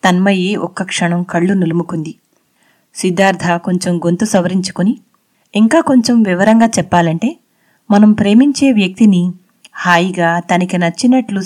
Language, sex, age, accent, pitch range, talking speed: Telugu, female, 30-49, native, 175-225 Hz, 100 wpm